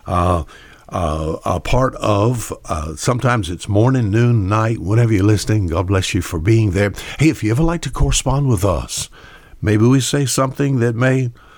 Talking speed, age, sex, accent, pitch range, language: 180 wpm, 60-79, male, American, 95-120 Hz, English